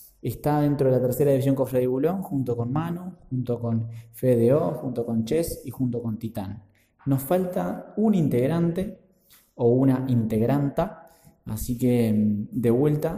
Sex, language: male, Spanish